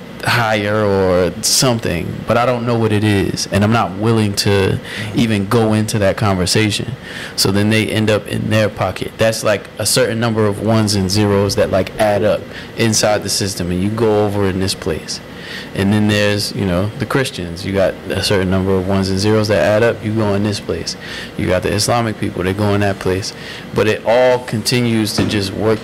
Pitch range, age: 100-115 Hz, 20-39